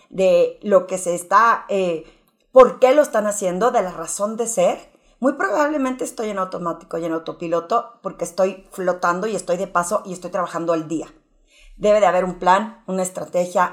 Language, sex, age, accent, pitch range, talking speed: Spanish, female, 40-59, Mexican, 180-245 Hz, 190 wpm